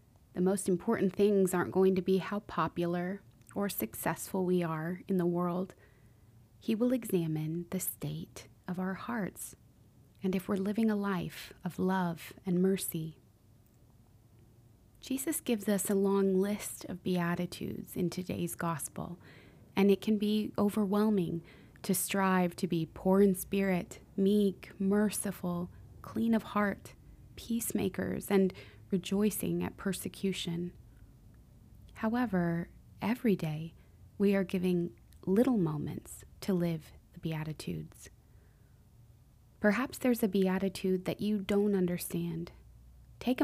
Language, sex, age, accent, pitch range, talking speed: English, female, 20-39, American, 155-200 Hz, 125 wpm